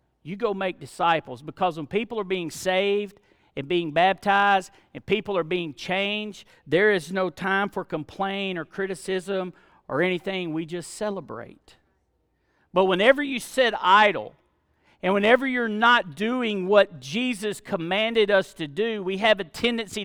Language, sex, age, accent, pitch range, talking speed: English, male, 50-69, American, 160-215 Hz, 155 wpm